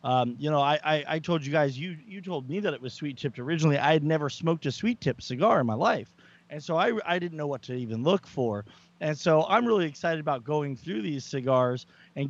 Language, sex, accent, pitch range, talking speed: English, male, American, 125-170 Hz, 255 wpm